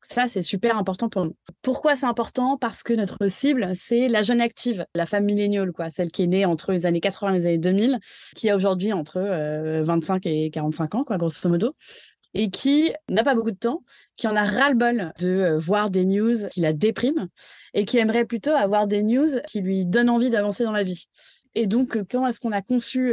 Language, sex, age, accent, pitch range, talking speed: French, female, 20-39, French, 190-240 Hz, 215 wpm